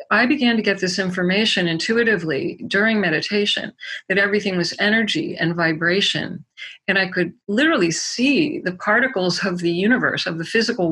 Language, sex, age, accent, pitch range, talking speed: English, female, 40-59, American, 170-215 Hz, 155 wpm